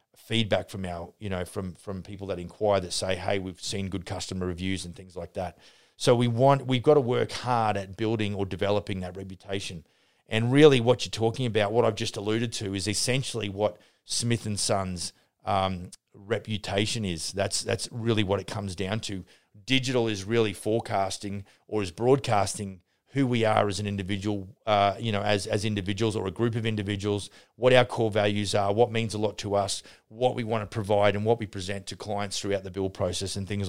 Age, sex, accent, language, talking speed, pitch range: 30-49, male, Australian, English, 205 wpm, 95-115 Hz